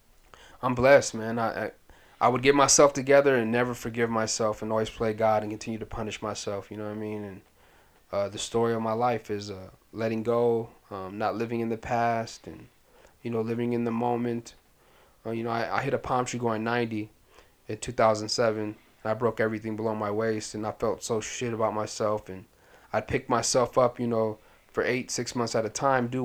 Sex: male